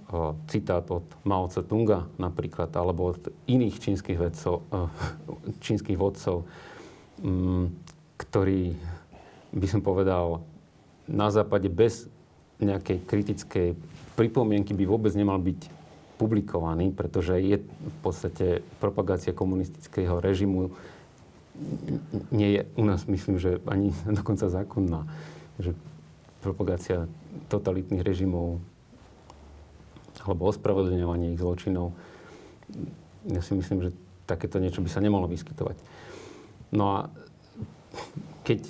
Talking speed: 100 wpm